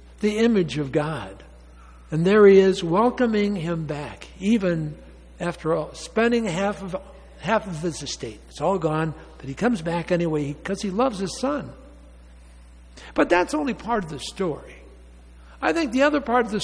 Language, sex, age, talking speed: English, male, 60-79, 175 wpm